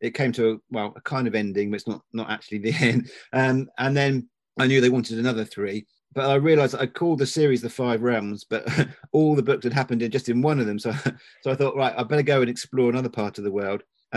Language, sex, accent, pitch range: English, male, British, 110-130 Hz